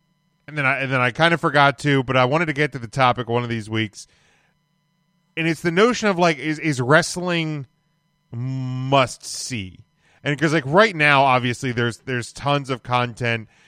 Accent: American